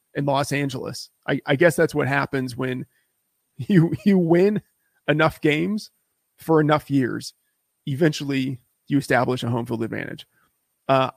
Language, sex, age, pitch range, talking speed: English, male, 30-49, 130-160 Hz, 140 wpm